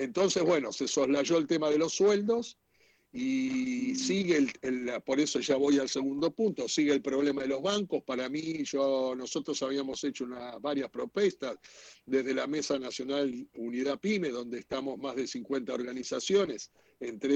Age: 60-79